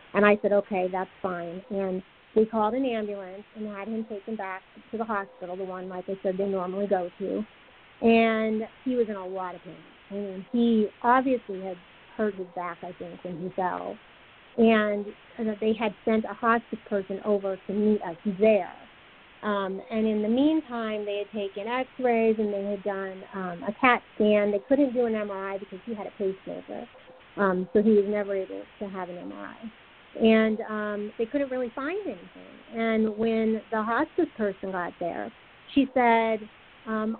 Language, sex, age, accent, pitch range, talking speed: English, female, 30-49, American, 200-235 Hz, 185 wpm